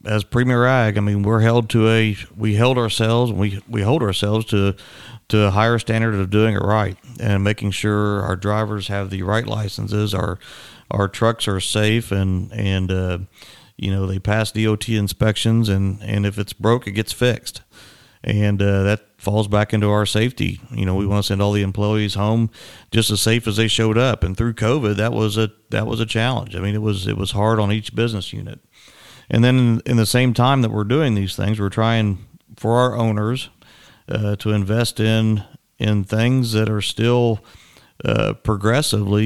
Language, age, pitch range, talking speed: English, 40-59, 105-115 Hz, 195 wpm